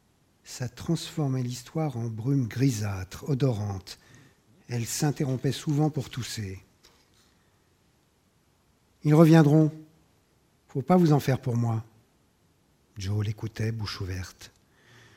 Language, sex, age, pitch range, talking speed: French, male, 50-69, 110-145 Hz, 100 wpm